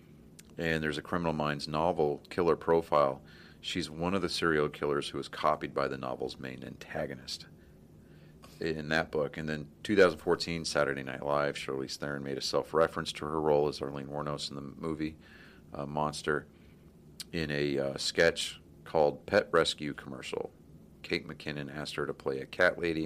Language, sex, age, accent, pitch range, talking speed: English, male, 40-59, American, 70-80 Hz, 165 wpm